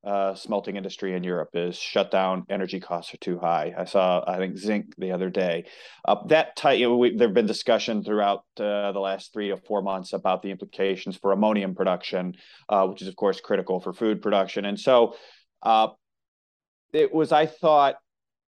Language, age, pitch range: English, 30-49, 100-120 Hz